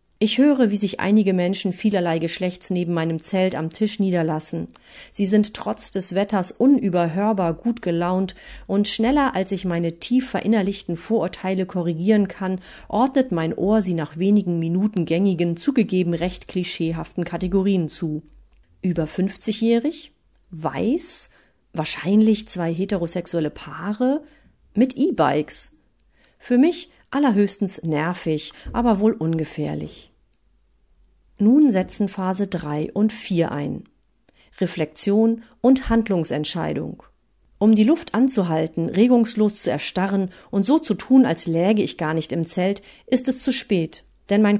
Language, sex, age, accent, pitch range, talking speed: German, female, 40-59, German, 170-220 Hz, 130 wpm